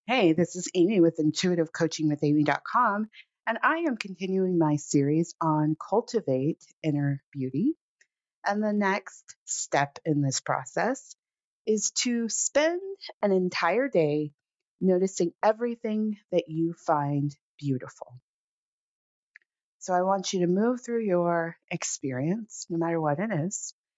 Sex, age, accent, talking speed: female, 30-49, American, 130 wpm